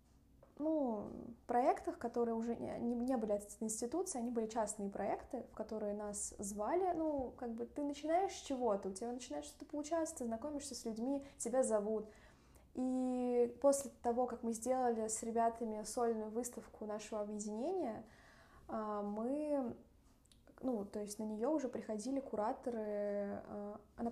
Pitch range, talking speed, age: 210-255 Hz, 145 wpm, 20-39